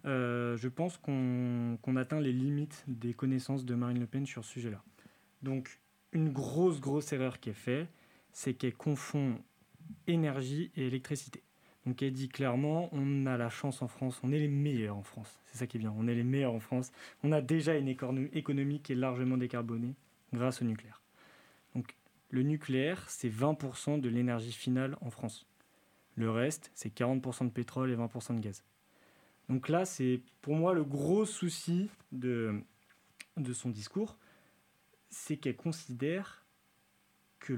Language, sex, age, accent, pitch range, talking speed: French, male, 20-39, French, 120-150 Hz, 170 wpm